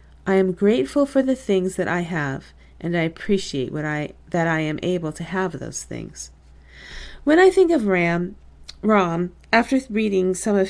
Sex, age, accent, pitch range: female, 40-59, American, 175-230 Hz